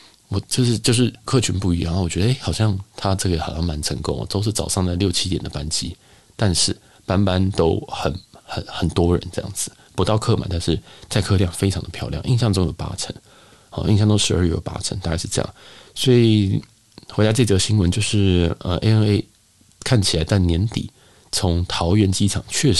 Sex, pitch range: male, 85-105 Hz